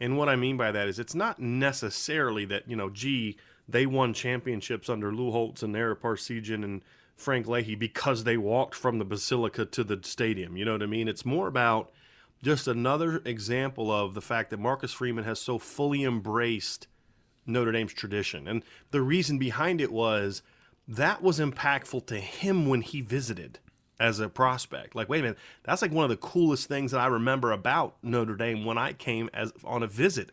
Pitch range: 110-135 Hz